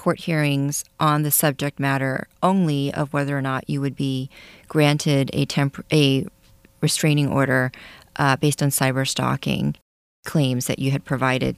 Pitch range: 140-170 Hz